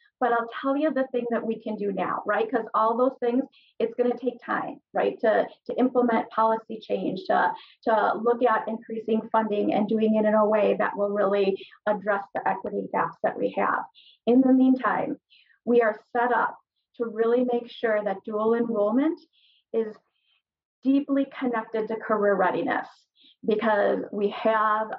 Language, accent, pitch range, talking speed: English, American, 215-245 Hz, 175 wpm